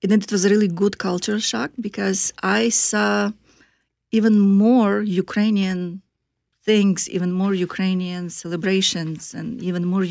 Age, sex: 30-49, female